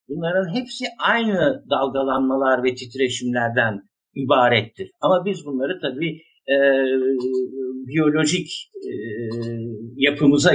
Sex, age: male, 60-79